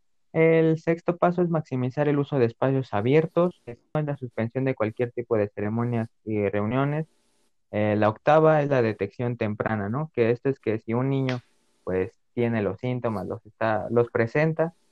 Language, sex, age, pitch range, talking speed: Spanish, male, 20-39, 110-135 Hz, 175 wpm